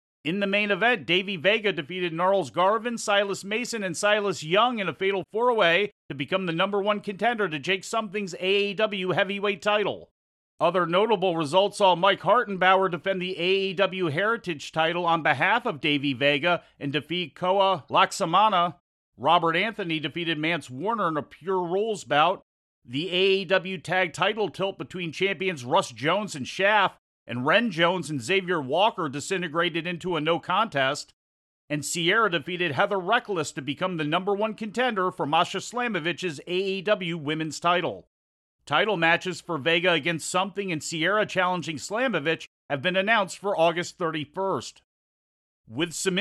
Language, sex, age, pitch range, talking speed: English, male, 40-59, 165-200 Hz, 155 wpm